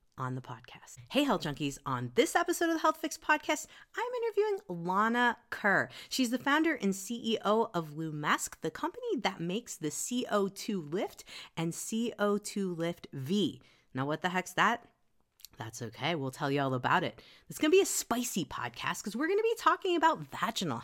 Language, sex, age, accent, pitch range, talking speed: English, female, 30-49, American, 170-240 Hz, 180 wpm